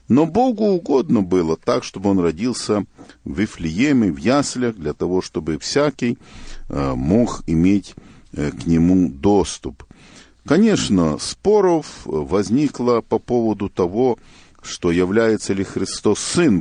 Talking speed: 115 wpm